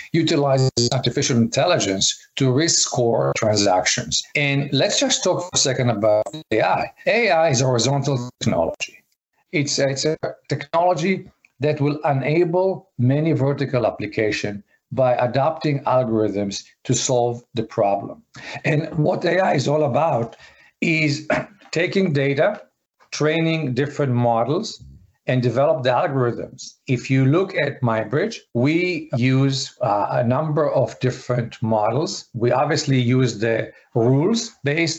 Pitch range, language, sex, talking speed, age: 120-150 Hz, English, male, 130 wpm, 50-69